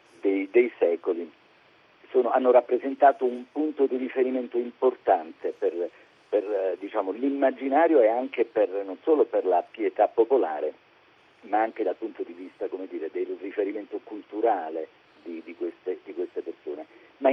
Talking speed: 140 wpm